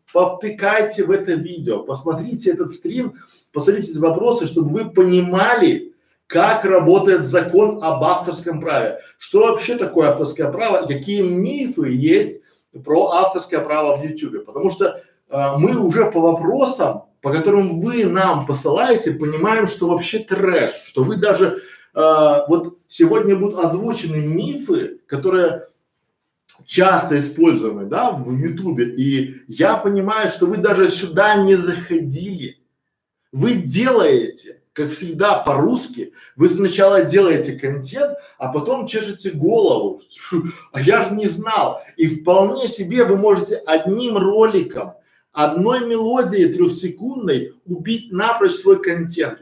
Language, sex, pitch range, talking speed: Russian, male, 165-235 Hz, 125 wpm